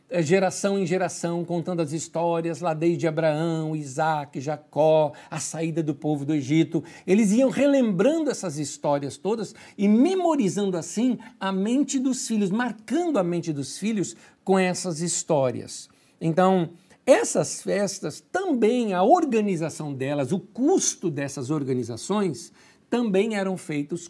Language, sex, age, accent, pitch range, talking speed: Portuguese, male, 60-79, Brazilian, 155-195 Hz, 130 wpm